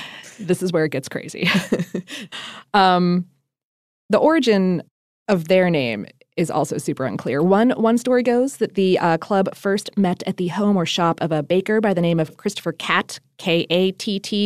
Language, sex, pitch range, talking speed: English, female, 170-220 Hz, 170 wpm